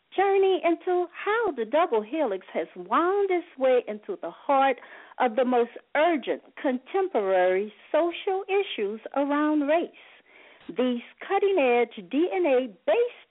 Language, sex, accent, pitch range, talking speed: English, female, American, 220-345 Hz, 115 wpm